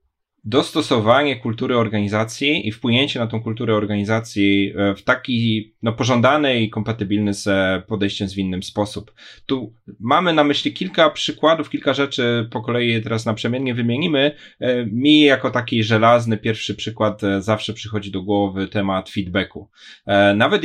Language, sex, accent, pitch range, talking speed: Polish, male, native, 105-120 Hz, 135 wpm